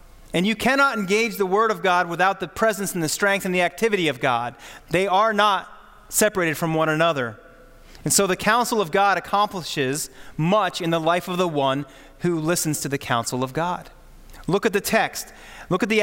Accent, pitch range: American, 155-205 Hz